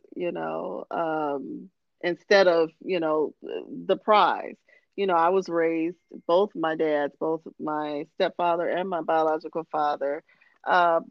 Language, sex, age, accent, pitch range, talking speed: English, female, 40-59, American, 170-235 Hz, 135 wpm